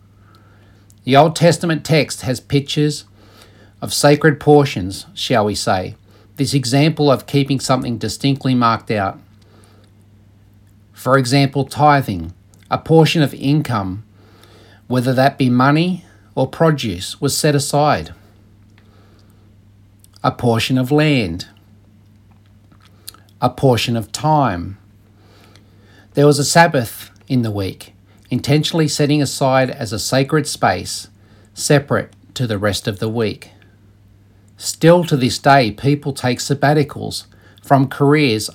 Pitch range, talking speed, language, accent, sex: 100-140 Hz, 115 wpm, English, Australian, male